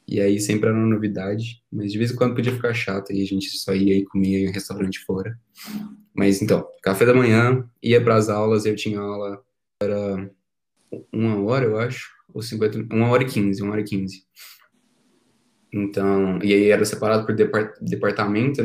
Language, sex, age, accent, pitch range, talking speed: Portuguese, male, 20-39, Brazilian, 105-115 Hz, 190 wpm